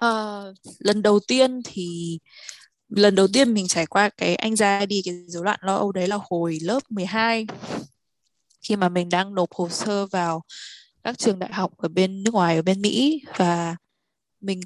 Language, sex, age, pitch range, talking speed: Vietnamese, female, 20-39, 175-220 Hz, 190 wpm